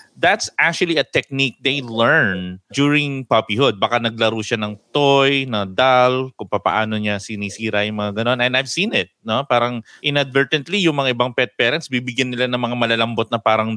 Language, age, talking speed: English, 20-39, 180 wpm